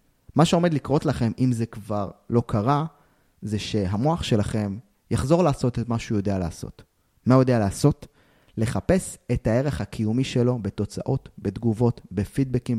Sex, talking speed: male, 145 wpm